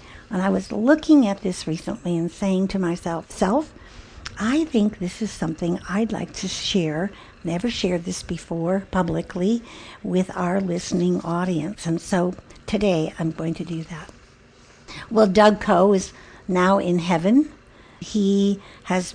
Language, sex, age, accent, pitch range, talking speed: English, female, 60-79, American, 170-200 Hz, 145 wpm